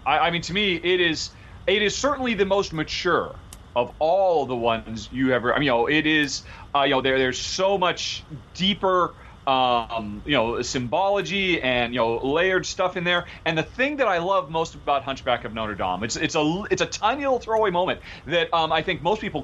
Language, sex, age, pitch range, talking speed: English, male, 30-49, 130-190 Hz, 200 wpm